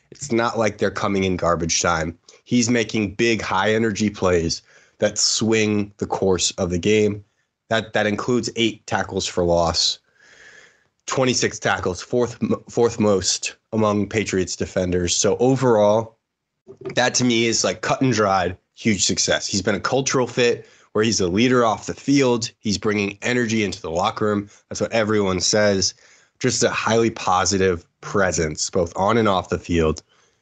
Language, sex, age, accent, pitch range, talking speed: English, male, 20-39, American, 95-120 Hz, 160 wpm